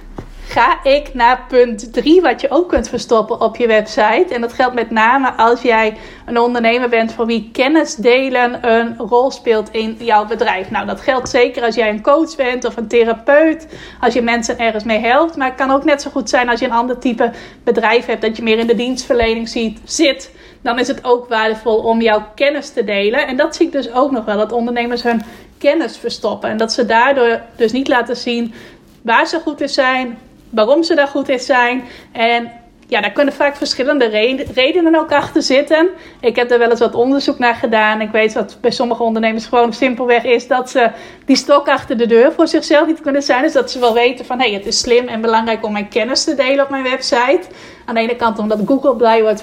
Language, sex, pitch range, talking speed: Dutch, female, 225-275 Hz, 225 wpm